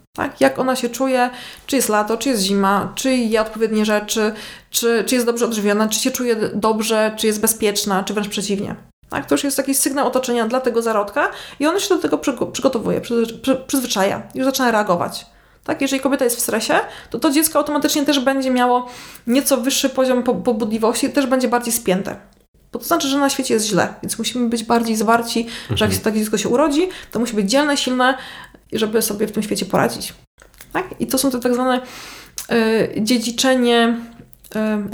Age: 20-39